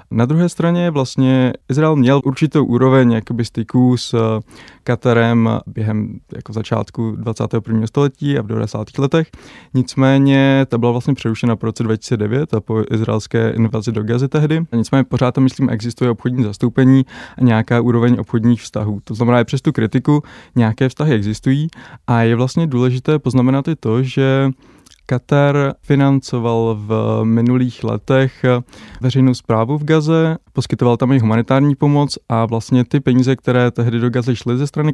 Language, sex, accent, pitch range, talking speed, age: Czech, male, native, 115-135 Hz, 155 wpm, 20-39